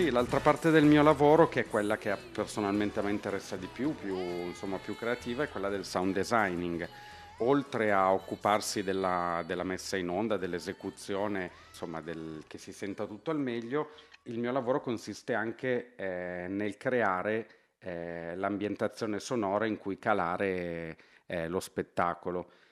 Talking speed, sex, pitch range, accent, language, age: 150 wpm, male, 90-115 Hz, native, Italian, 40-59